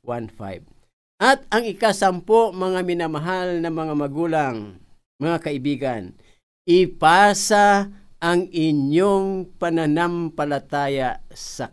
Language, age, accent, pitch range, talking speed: Filipino, 50-69, native, 115-170 Hz, 85 wpm